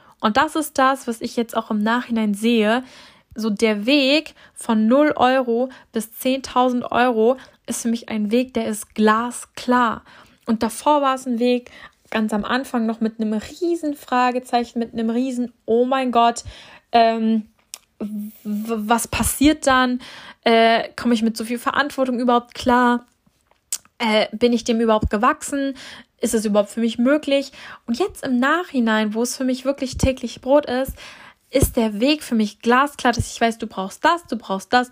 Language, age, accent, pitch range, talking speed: German, 10-29, German, 225-260 Hz, 170 wpm